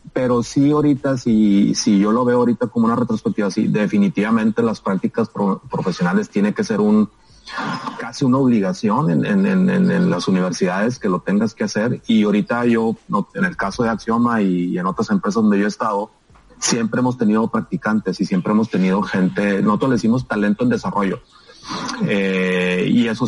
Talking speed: 185 wpm